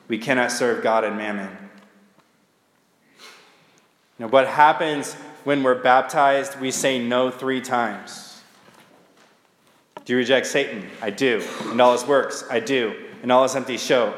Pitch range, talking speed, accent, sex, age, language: 125-150 Hz, 145 wpm, American, male, 20-39, English